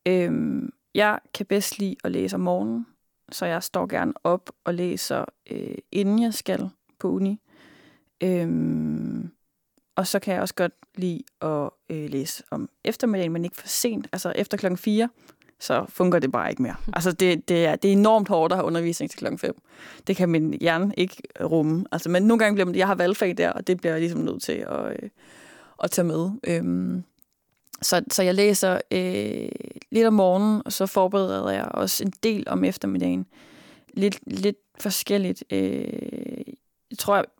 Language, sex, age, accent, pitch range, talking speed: Danish, female, 20-39, native, 165-215 Hz, 185 wpm